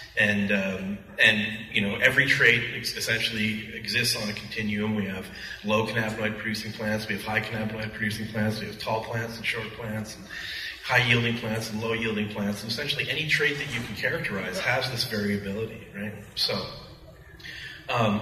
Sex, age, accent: male, 30-49, American